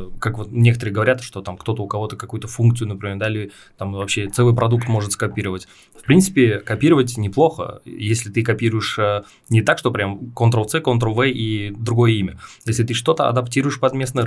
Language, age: Russian, 20-39